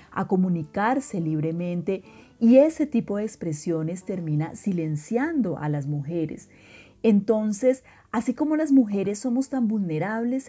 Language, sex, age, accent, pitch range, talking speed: Spanish, female, 40-59, Colombian, 165-225 Hz, 120 wpm